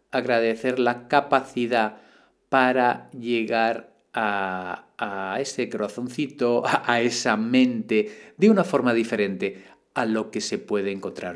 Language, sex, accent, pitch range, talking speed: Spanish, male, Spanish, 105-150 Hz, 115 wpm